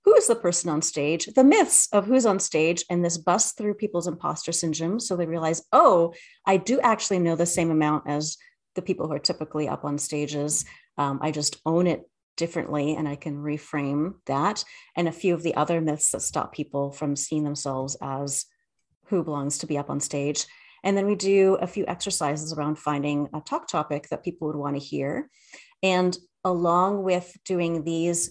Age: 30-49